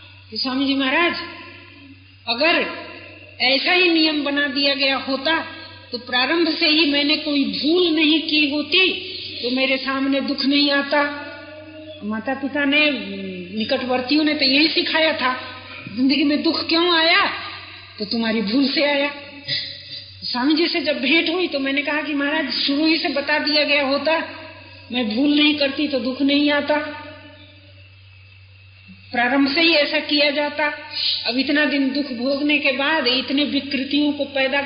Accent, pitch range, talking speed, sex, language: native, 260-300 Hz, 155 wpm, female, Hindi